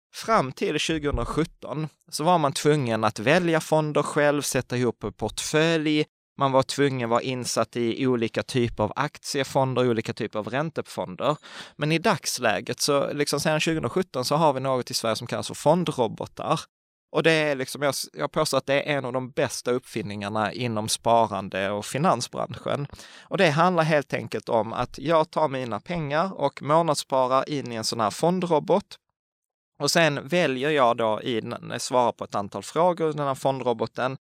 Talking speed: 180 wpm